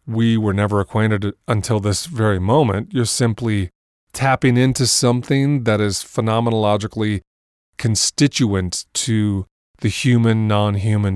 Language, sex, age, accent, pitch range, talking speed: English, male, 30-49, American, 95-120 Hz, 110 wpm